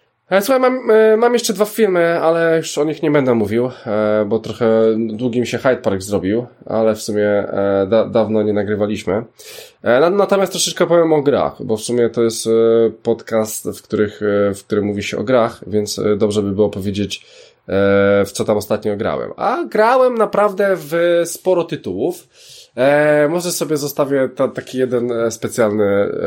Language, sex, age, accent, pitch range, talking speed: Polish, male, 20-39, native, 110-180 Hz, 155 wpm